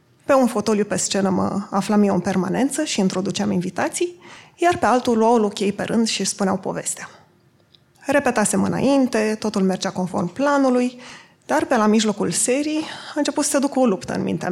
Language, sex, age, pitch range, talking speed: Romanian, female, 20-39, 210-265 Hz, 175 wpm